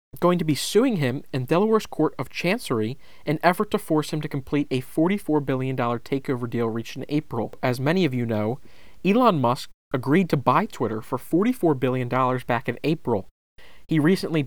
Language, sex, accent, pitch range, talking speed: English, male, American, 125-155 Hz, 185 wpm